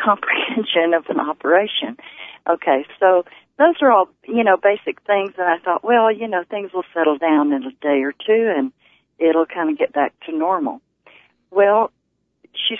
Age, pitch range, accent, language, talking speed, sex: 50-69, 165-220 Hz, American, English, 180 wpm, female